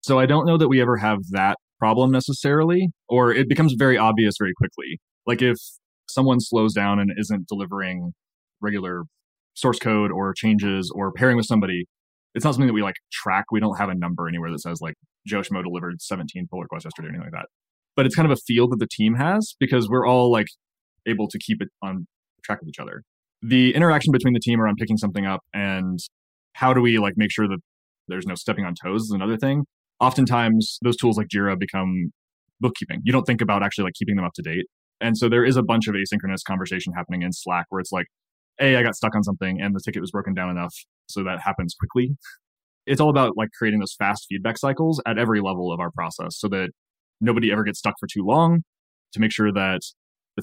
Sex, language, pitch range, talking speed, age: male, English, 95-125 Hz, 225 wpm, 20-39